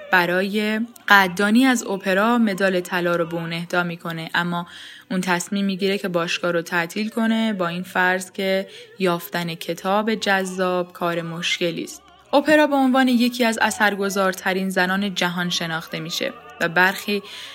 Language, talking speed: Persian, 145 wpm